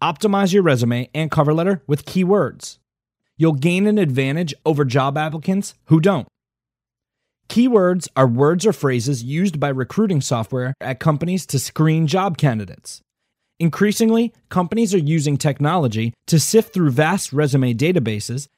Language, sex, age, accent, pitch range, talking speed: English, male, 30-49, American, 135-185 Hz, 140 wpm